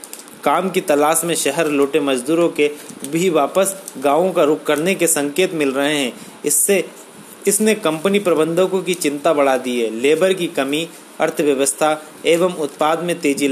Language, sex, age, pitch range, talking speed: Hindi, male, 30-49, 140-175 Hz, 160 wpm